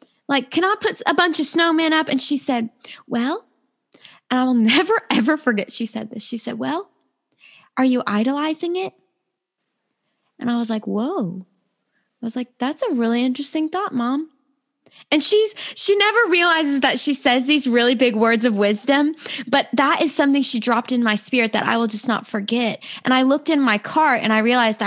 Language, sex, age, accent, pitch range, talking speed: English, female, 20-39, American, 215-280 Hz, 195 wpm